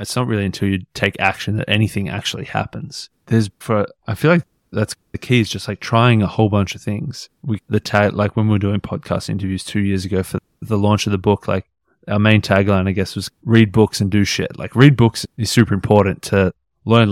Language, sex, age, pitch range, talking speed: English, male, 20-39, 100-115 Hz, 235 wpm